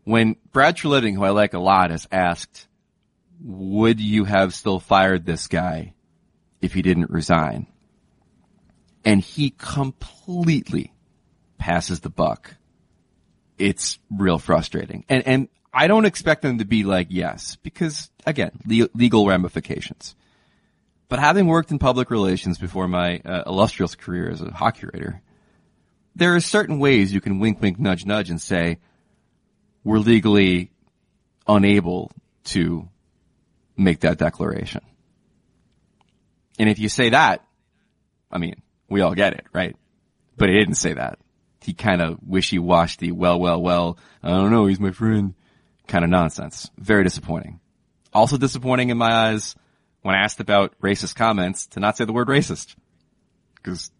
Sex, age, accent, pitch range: male, 30-49, American, 90-115 Hz